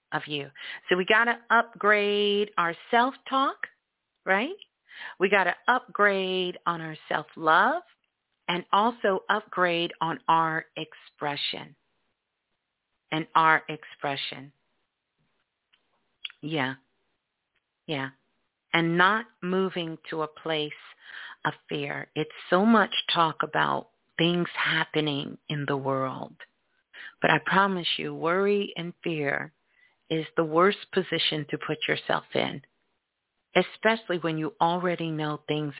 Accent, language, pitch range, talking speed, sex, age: American, English, 155-195 Hz, 110 wpm, female, 50-69